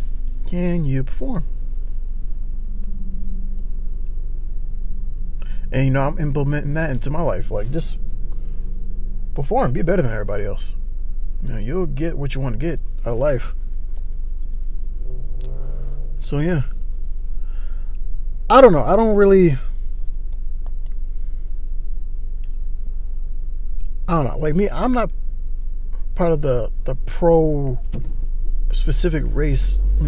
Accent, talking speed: American, 110 wpm